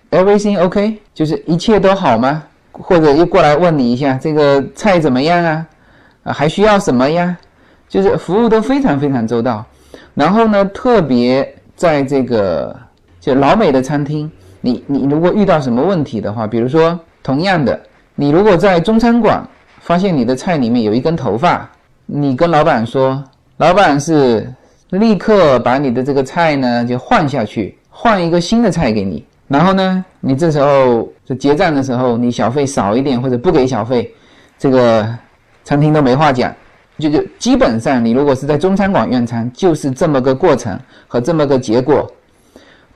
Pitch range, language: 125-190 Hz, Chinese